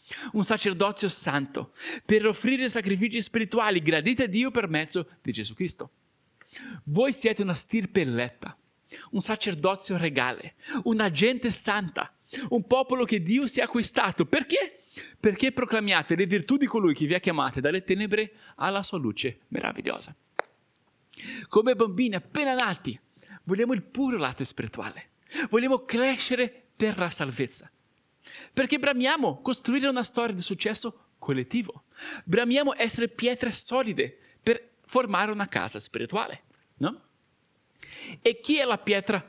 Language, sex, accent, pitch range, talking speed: Italian, male, native, 185-240 Hz, 130 wpm